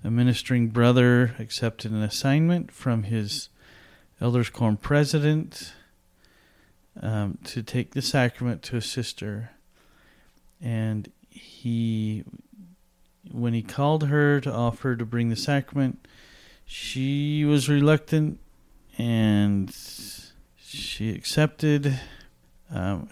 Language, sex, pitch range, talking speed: English, male, 110-135 Hz, 100 wpm